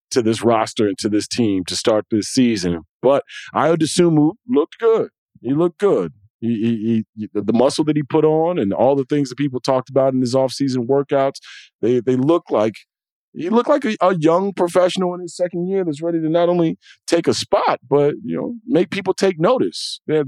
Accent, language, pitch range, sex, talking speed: American, English, 125-170 Hz, male, 205 wpm